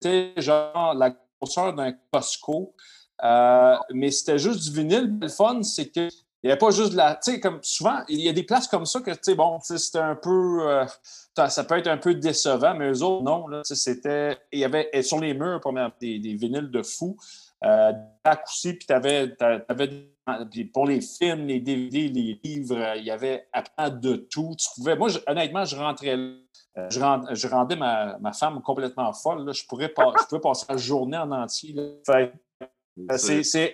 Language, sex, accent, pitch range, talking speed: French, male, Canadian, 130-165 Hz, 185 wpm